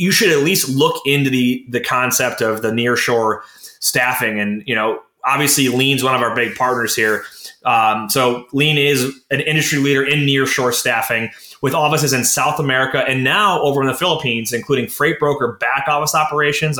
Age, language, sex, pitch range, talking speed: 20-39, English, male, 125-145 Hz, 180 wpm